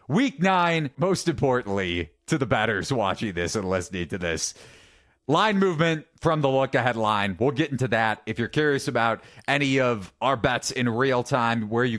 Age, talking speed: 30-49, 180 wpm